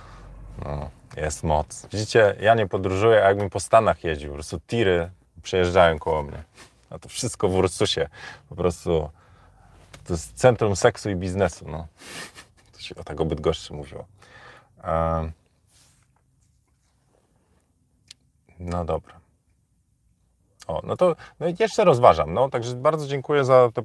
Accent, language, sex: native, Polish, male